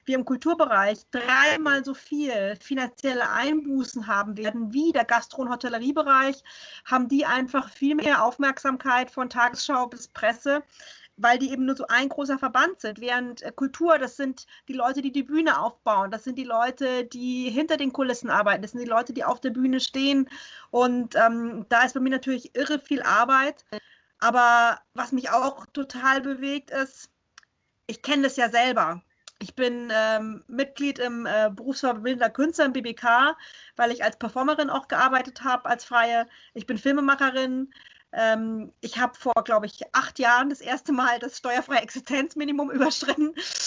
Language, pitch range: German, 240-280 Hz